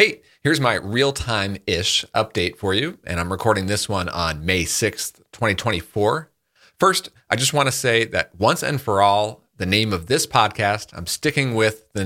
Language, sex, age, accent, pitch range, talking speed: English, male, 40-59, American, 90-125 Hz, 180 wpm